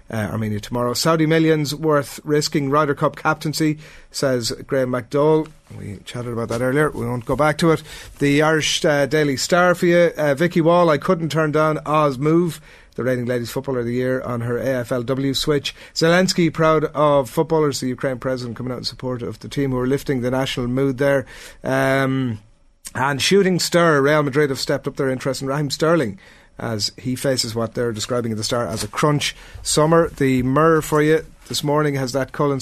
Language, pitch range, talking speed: English, 125-155 Hz, 200 wpm